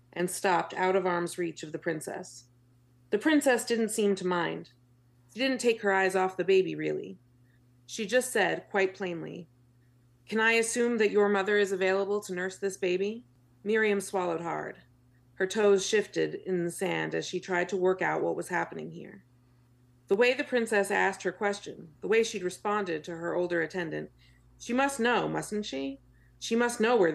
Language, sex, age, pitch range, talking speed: English, female, 40-59, 125-205 Hz, 185 wpm